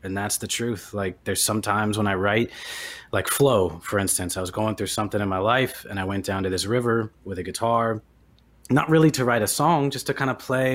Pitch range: 95-125 Hz